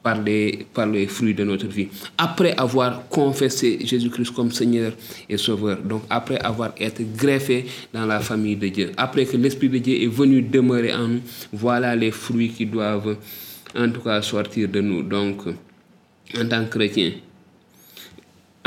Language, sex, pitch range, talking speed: French, male, 105-130 Hz, 165 wpm